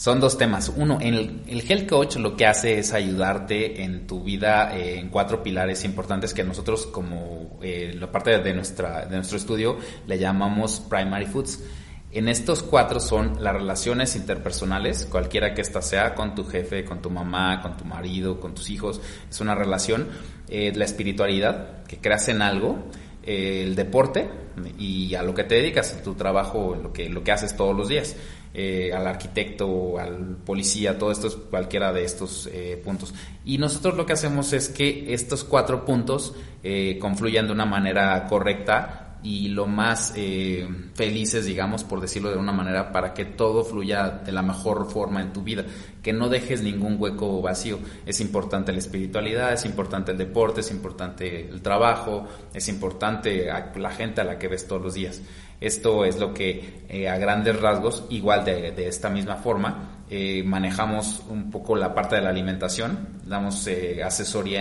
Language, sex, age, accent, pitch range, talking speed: Spanish, male, 30-49, Mexican, 95-105 Hz, 180 wpm